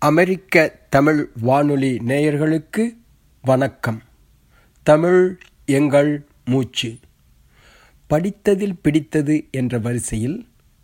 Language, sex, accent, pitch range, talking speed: Tamil, male, native, 120-145 Hz, 65 wpm